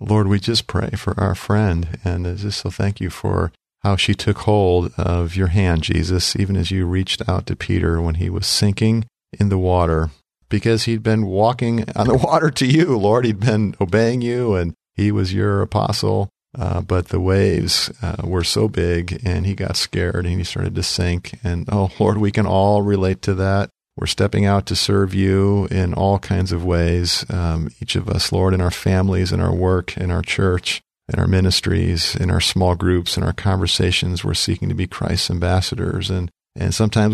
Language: English